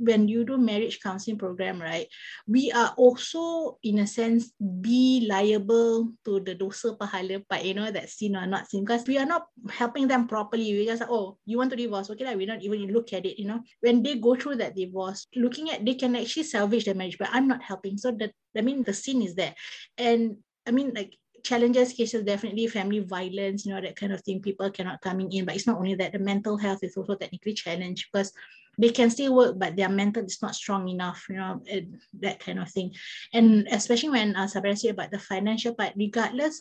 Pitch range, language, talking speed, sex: 195-240 Hz, English, 230 wpm, female